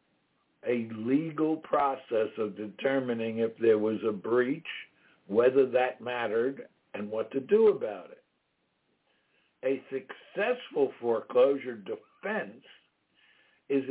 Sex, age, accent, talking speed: male, 60-79, American, 105 wpm